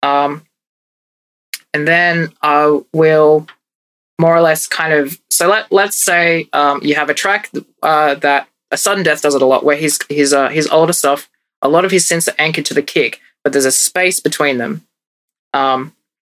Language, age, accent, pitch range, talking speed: English, 20-39, Australian, 140-165 Hz, 190 wpm